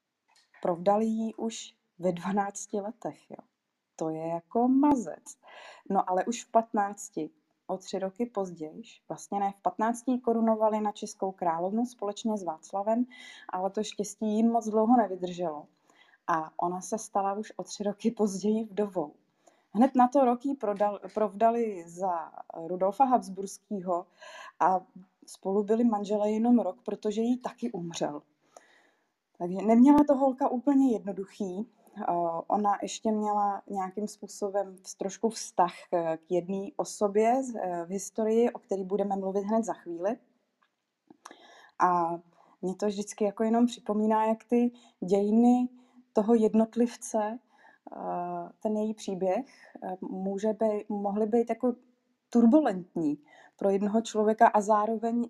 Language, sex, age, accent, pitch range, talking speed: Czech, female, 20-39, native, 190-230 Hz, 125 wpm